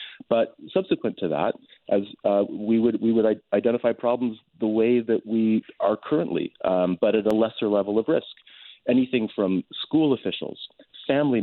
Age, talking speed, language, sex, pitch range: 40-59, 165 wpm, English, male, 95-115 Hz